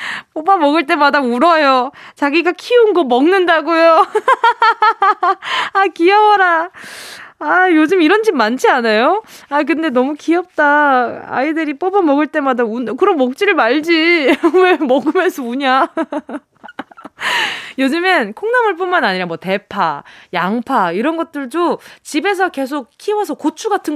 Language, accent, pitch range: Korean, native, 235-370 Hz